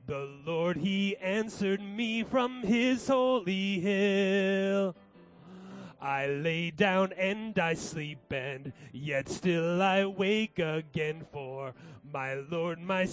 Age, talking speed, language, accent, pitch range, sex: 30-49, 115 wpm, English, American, 170-220 Hz, male